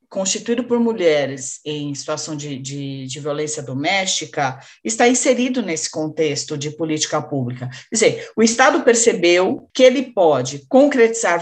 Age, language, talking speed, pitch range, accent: 40-59, Portuguese, 130 wpm, 155-240 Hz, Brazilian